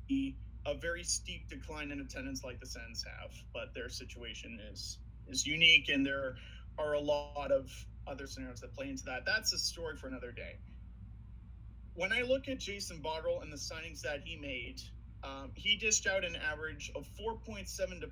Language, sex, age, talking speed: English, male, 40-59, 180 wpm